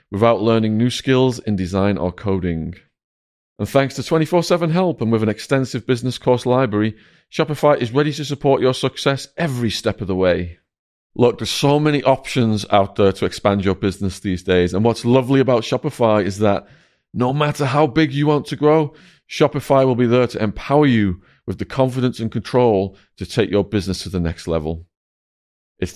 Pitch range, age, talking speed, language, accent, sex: 100-140 Hz, 30-49, 185 wpm, English, British, male